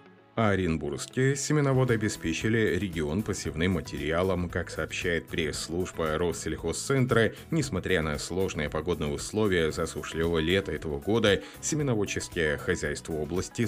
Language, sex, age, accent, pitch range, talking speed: Russian, male, 30-49, native, 80-100 Hz, 95 wpm